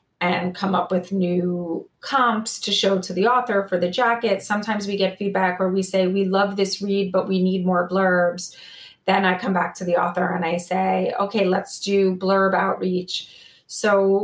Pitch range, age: 180-200 Hz, 30-49